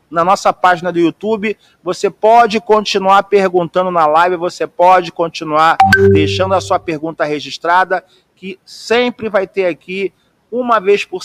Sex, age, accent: male, 40-59, Brazilian